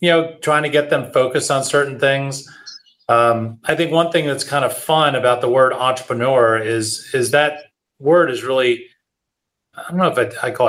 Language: English